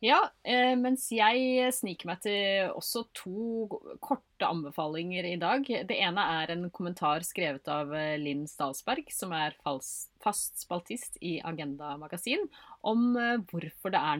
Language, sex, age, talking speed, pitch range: English, female, 30-49, 135 wpm, 155-225 Hz